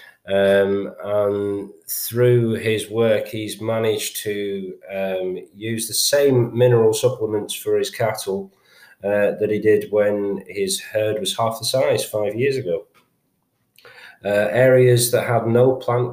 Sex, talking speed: male, 140 wpm